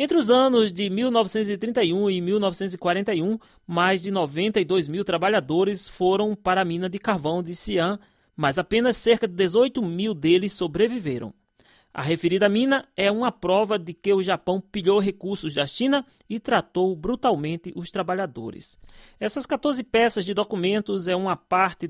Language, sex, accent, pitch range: Chinese, male, Brazilian, 170-215 Hz